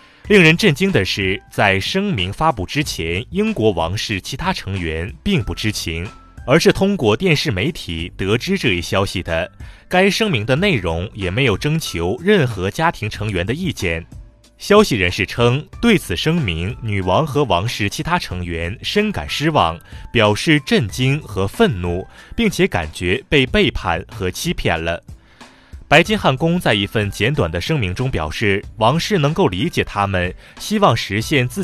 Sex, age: male, 20-39